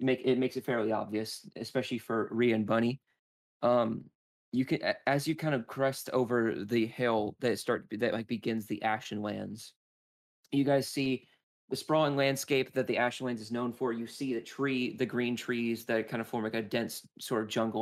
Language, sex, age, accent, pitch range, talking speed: English, male, 20-39, American, 110-130 Hz, 200 wpm